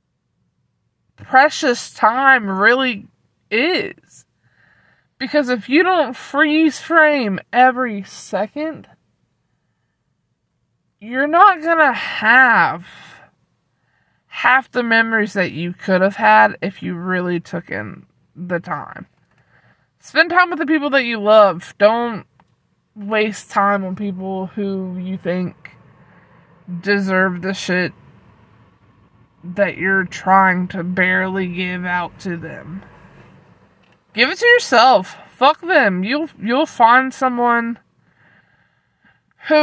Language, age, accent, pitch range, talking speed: English, 20-39, American, 180-260 Hz, 105 wpm